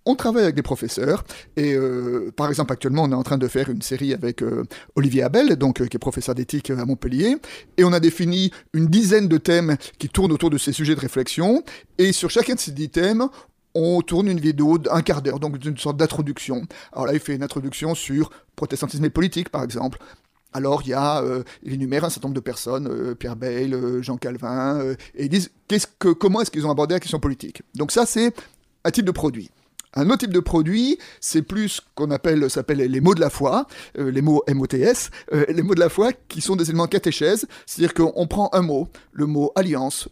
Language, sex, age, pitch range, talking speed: French, male, 30-49, 135-185 Hz, 225 wpm